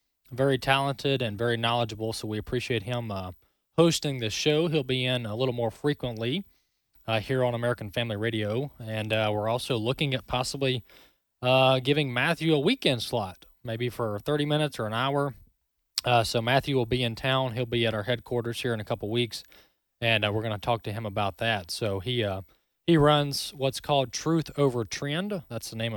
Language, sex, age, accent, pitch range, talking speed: English, male, 20-39, American, 110-135 Hz, 200 wpm